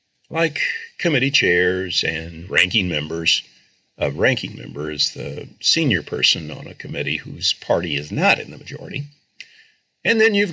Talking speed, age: 150 wpm, 50-69